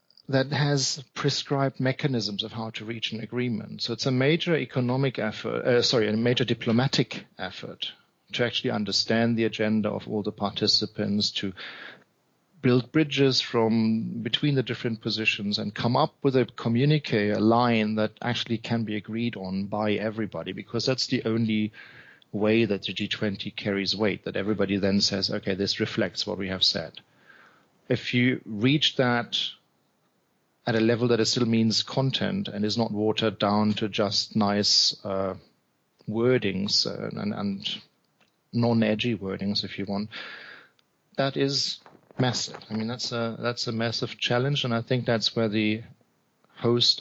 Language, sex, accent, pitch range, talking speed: English, male, German, 105-125 Hz, 160 wpm